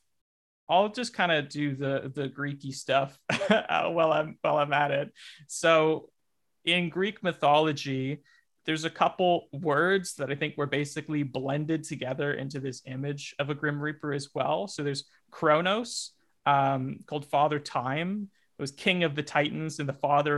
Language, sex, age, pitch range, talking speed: English, male, 30-49, 135-155 Hz, 160 wpm